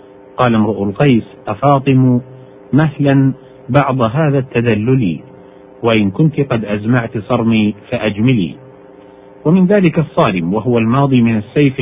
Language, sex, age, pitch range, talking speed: Arabic, male, 50-69, 105-135 Hz, 105 wpm